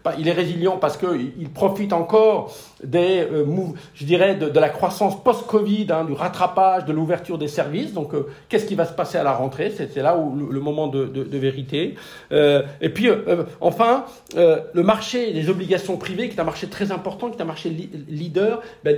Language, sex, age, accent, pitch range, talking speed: French, male, 50-69, French, 150-205 Hz, 220 wpm